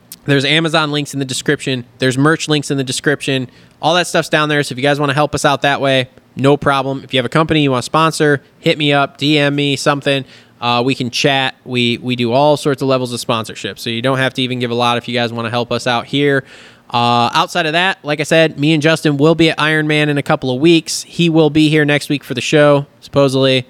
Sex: male